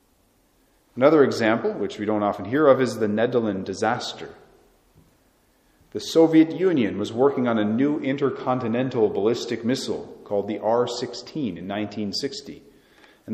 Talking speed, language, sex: 130 wpm, English, male